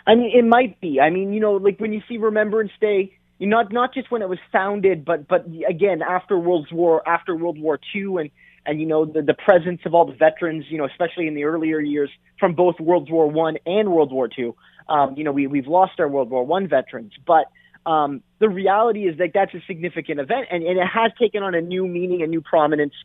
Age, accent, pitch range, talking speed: 20-39, American, 155-200 Hz, 240 wpm